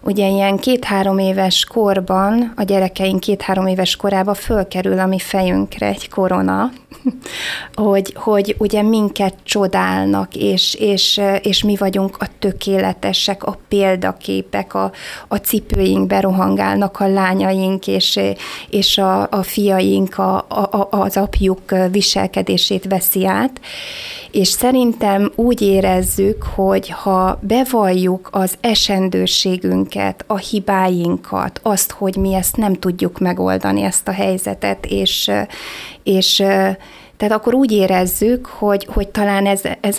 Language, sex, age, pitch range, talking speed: Hungarian, female, 20-39, 185-220 Hz, 120 wpm